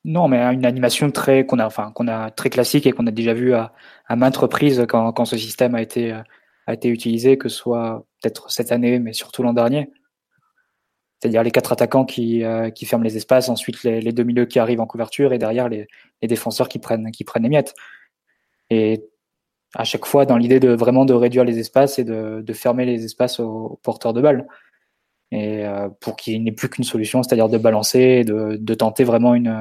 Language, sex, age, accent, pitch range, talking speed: French, male, 20-39, French, 115-130 Hz, 220 wpm